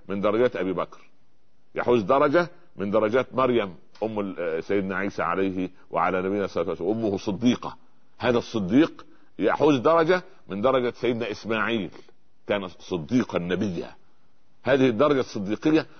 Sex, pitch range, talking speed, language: male, 100-135 Hz, 125 wpm, Arabic